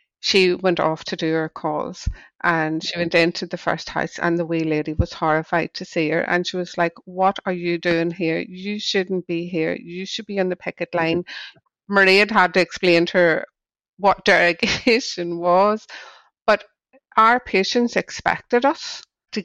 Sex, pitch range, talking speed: female, 170-200 Hz, 180 wpm